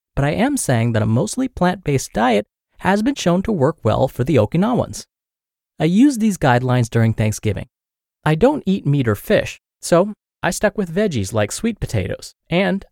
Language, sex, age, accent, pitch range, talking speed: English, male, 30-49, American, 110-180 Hz, 180 wpm